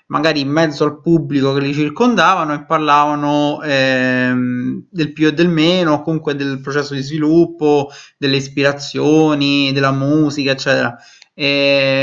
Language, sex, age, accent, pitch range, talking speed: Italian, male, 20-39, native, 135-155 Hz, 140 wpm